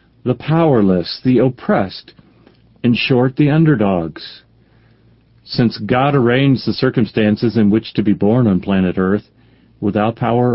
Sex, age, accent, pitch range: male, 40-59, American, 110-140 Hz